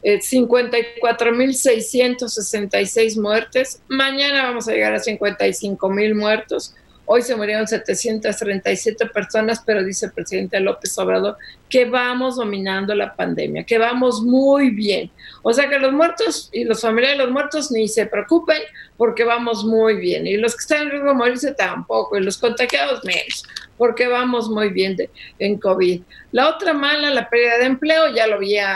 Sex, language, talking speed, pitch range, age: female, Spanish, 160 wpm, 205-245 Hz, 50-69